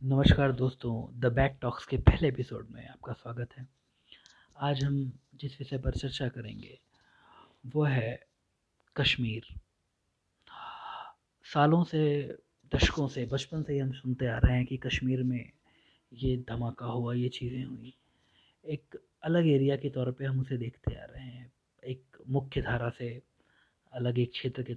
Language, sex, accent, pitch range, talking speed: Hindi, male, native, 120-140 Hz, 155 wpm